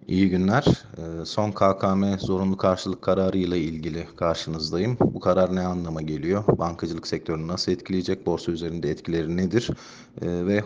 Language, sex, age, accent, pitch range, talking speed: Turkish, male, 40-59, native, 85-100 Hz, 130 wpm